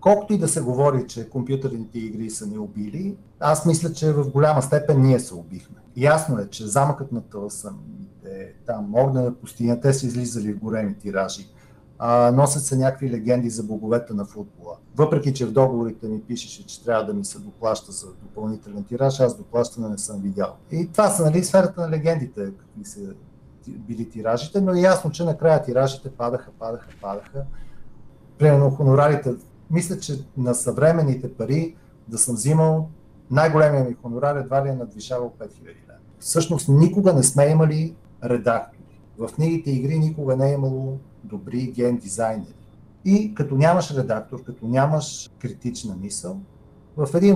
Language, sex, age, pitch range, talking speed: Bulgarian, male, 40-59, 115-150 Hz, 165 wpm